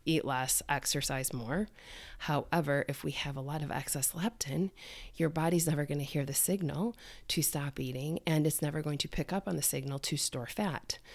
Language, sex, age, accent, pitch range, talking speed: English, female, 20-39, American, 140-170 Hz, 200 wpm